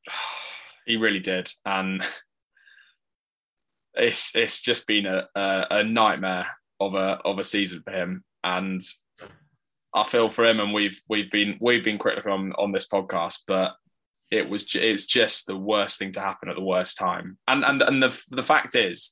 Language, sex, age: English, male, 20-39